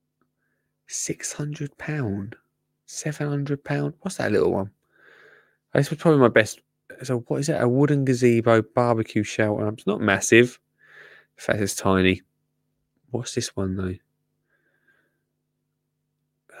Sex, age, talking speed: male, 20-39, 120 wpm